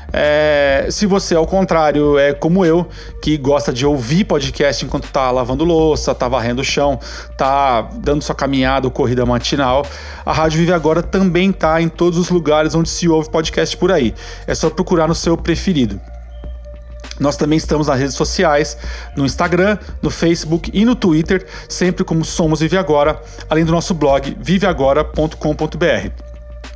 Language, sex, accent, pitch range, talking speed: Portuguese, male, Brazilian, 145-170 Hz, 160 wpm